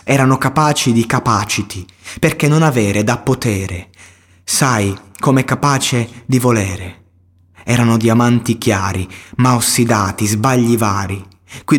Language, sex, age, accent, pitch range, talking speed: Italian, male, 20-39, native, 100-130 Hz, 110 wpm